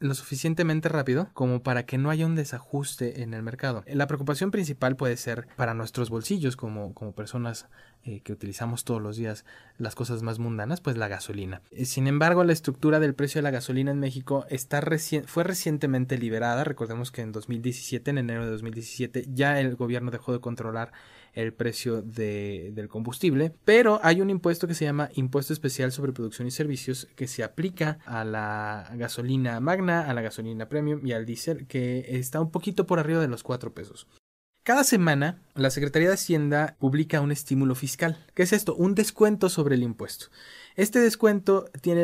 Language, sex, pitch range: Spanish, male, 120-165 Hz